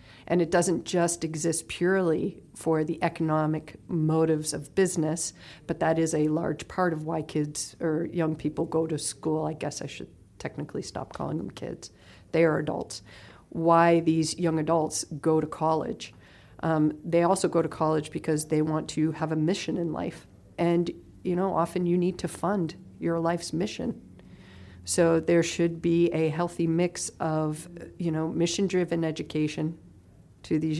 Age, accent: 50-69, American